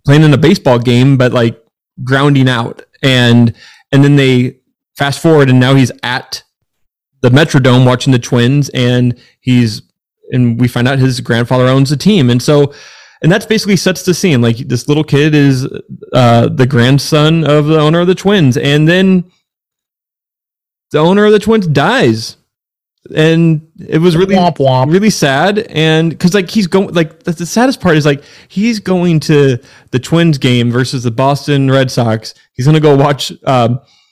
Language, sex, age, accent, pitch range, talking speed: English, male, 20-39, American, 125-160 Hz, 175 wpm